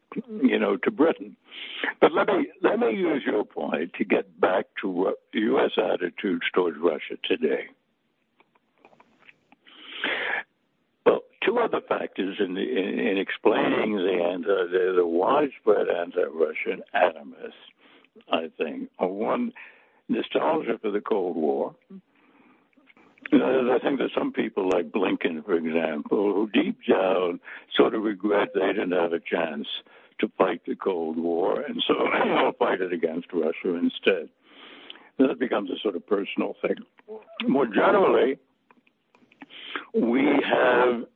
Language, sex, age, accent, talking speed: English, male, 60-79, American, 135 wpm